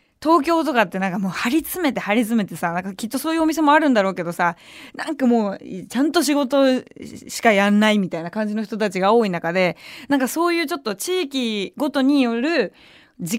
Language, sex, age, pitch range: Japanese, female, 20-39, 185-285 Hz